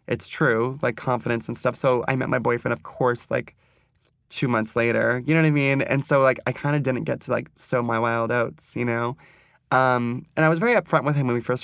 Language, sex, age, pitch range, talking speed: English, male, 20-39, 120-135 Hz, 255 wpm